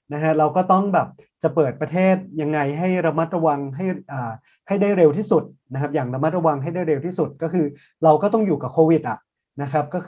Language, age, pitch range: Thai, 30-49, 130-165 Hz